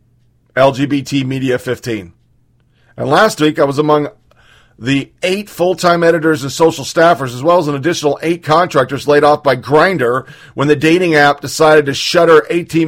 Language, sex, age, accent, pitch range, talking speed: English, male, 40-59, American, 125-170 Hz, 165 wpm